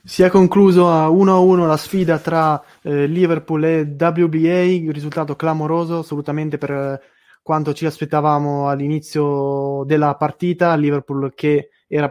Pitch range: 145-160 Hz